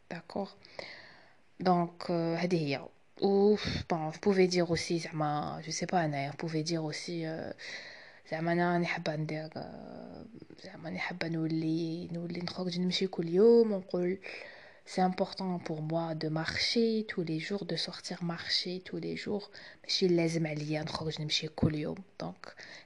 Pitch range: 165-205 Hz